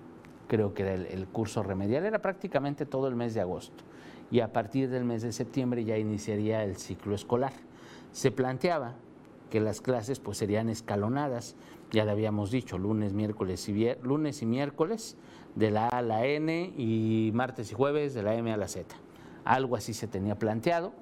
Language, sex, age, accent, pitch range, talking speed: Spanish, male, 50-69, Mexican, 105-145 Hz, 185 wpm